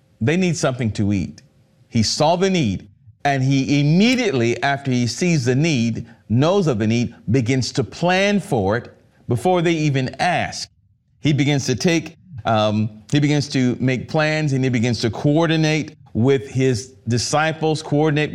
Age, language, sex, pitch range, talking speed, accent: 40-59, English, male, 115-150 Hz, 160 wpm, American